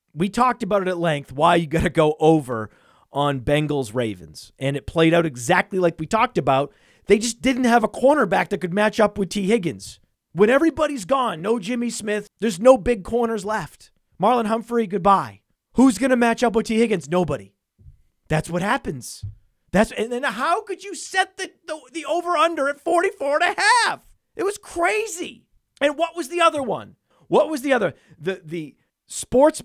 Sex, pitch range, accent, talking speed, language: male, 160-245 Hz, American, 195 wpm, English